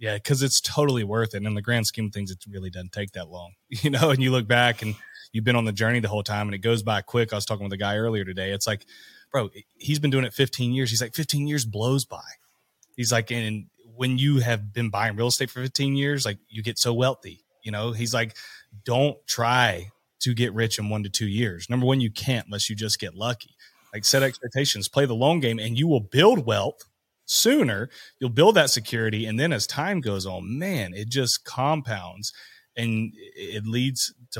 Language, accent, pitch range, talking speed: English, American, 110-135 Hz, 235 wpm